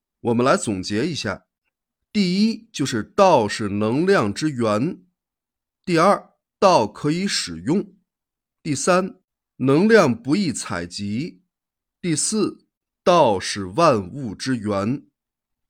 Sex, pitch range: male, 110-180 Hz